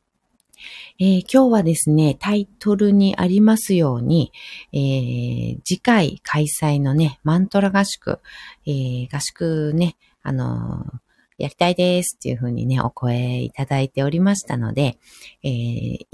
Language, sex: Japanese, female